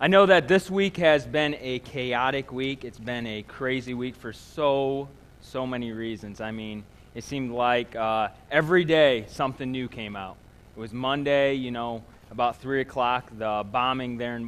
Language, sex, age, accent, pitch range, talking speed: English, male, 20-39, American, 115-145 Hz, 180 wpm